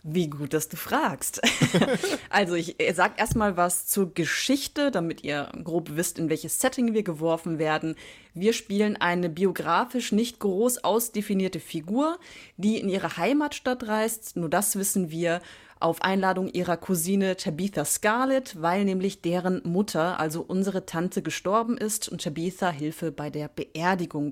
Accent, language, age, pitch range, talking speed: German, German, 30-49, 170-215 Hz, 150 wpm